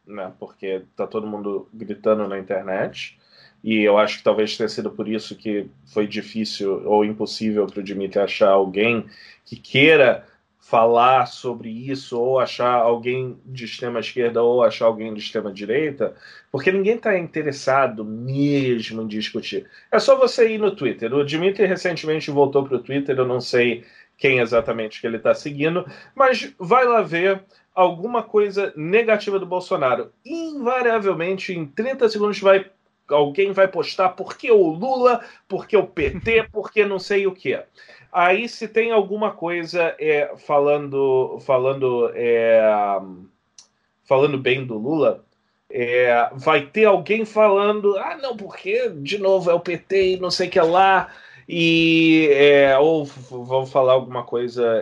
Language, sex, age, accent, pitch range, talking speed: Portuguese, male, 20-39, Brazilian, 115-195 Hz, 155 wpm